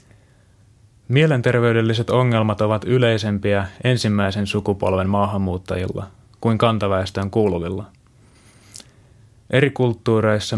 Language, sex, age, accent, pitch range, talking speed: Finnish, male, 20-39, native, 100-115 Hz, 70 wpm